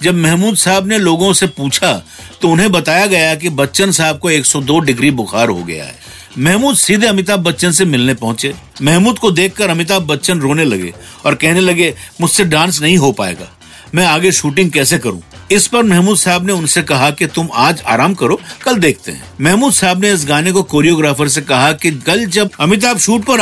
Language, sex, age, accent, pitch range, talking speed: Hindi, male, 50-69, native, 150-205 Hz, 200 wpm